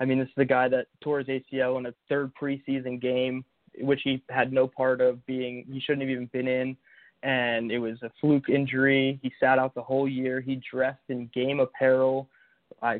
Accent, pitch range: American, 125-140 Hz